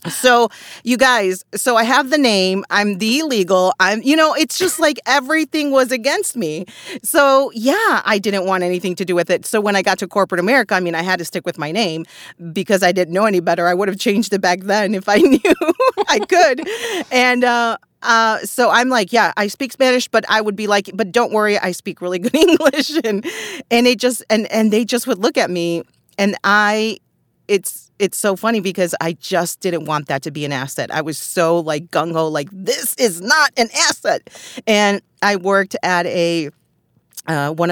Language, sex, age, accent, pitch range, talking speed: English, female, 40-59, American, 155-230 Hz, 215 wpm